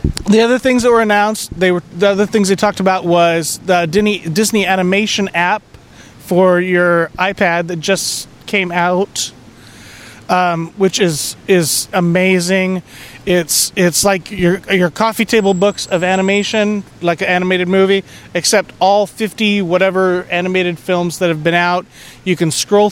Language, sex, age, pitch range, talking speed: English, male, 20-39, 165-195 Hz, 150 wpm